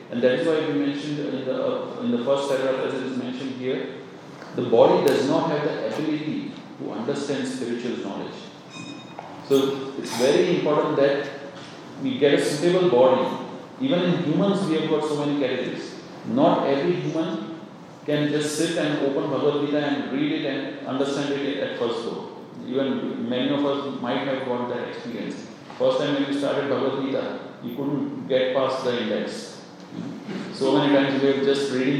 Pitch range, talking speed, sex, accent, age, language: 125-150 Hz, 180 wpm, male, Indian, 40-59, English